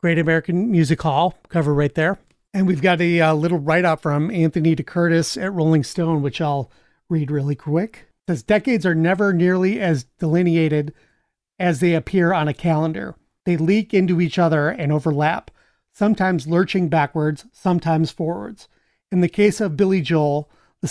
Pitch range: 160-185 Hz